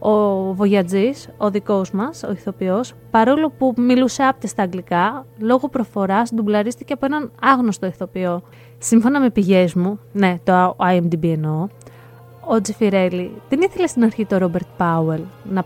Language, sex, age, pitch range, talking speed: Greek, female, 20-39, 185-245 Hz, 140 wpm